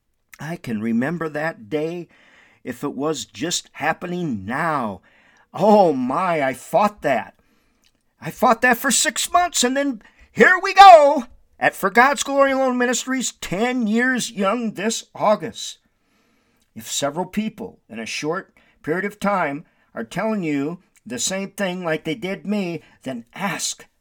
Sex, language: male, English